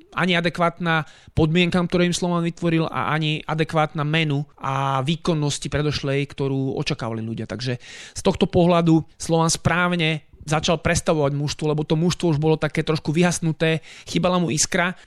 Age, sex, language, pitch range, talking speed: 30-49, male, Slovak, 150-175 Hz, 145 wpm